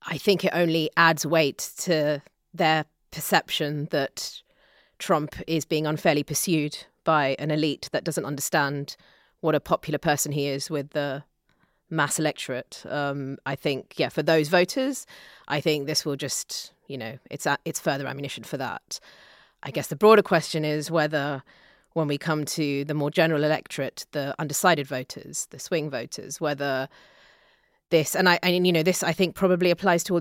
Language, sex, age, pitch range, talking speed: English, female, 30-49, 145-170 Hz, 170 wpm